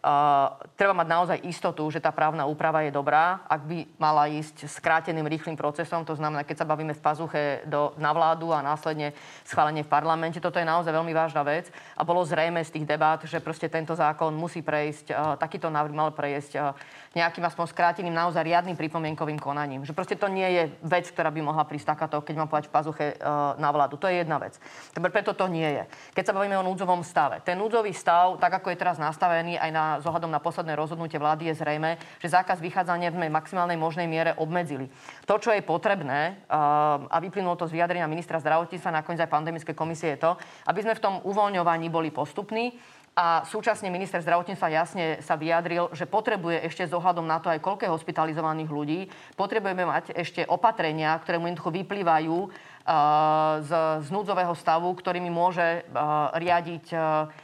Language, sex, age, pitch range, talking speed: Slovak, female, 20-39, 155-175 Hz, 190 wpm